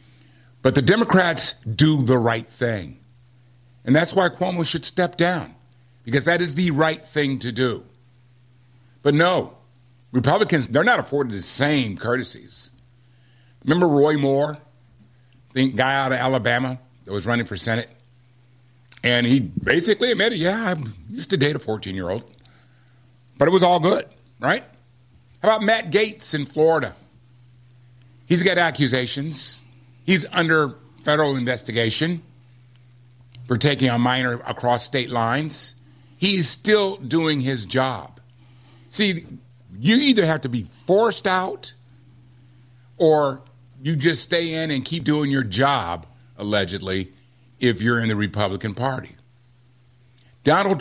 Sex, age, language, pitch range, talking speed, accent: male, 50-69, English, 125-150 Hz, 130 wpm, American